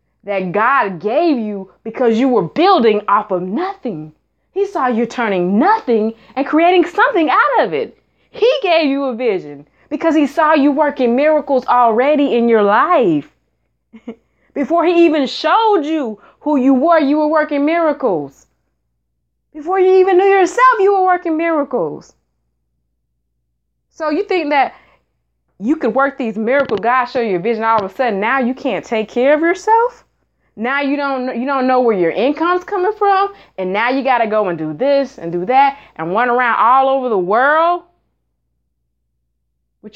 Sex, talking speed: female, 170 wpm